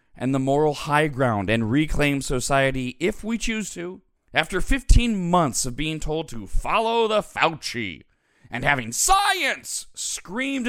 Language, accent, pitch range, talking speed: English, American, 120-185 Hz, 145 wpm